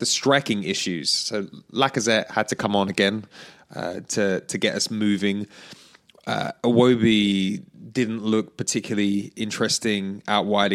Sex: male